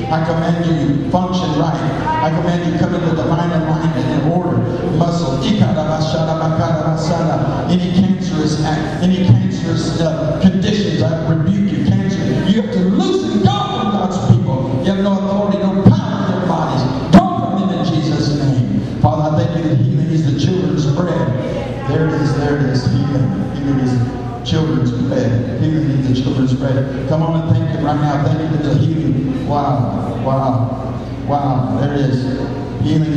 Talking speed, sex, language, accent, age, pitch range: 170 wpm, male, English, American, 60-79, 125-160 Hz